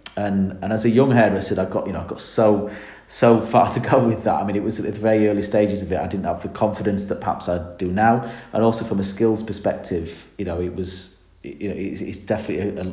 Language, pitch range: English, 95-110 Hz